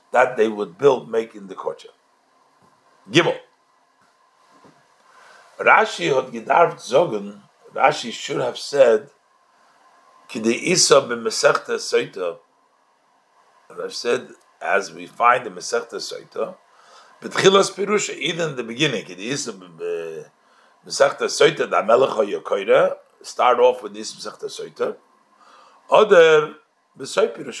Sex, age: male, 60-79